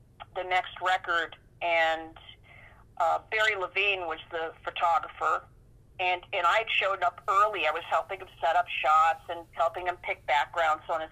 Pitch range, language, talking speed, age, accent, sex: 165-195 Hz, English, 165 wpm, 40-59, American, female